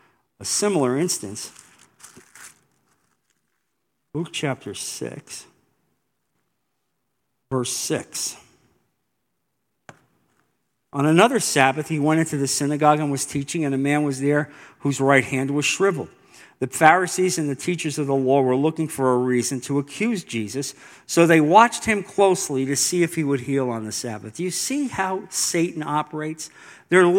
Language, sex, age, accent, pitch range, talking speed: English, male, 50-69, American, 135-180 Hz, 145 wpm